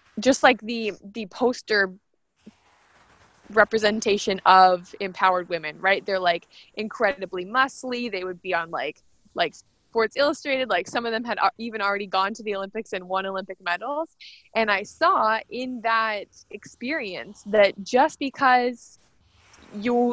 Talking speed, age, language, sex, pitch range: 140 wpm, 20-39, English, female, 190-240 Hz